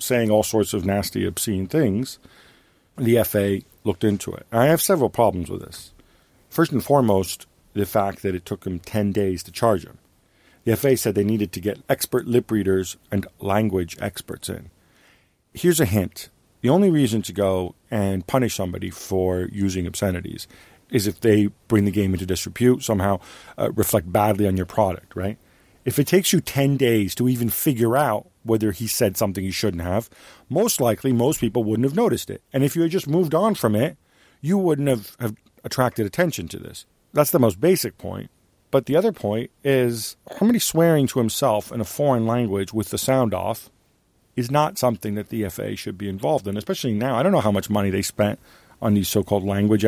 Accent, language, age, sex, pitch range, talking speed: American, English, 50-69, male, 100-125 Hz, 200 wpm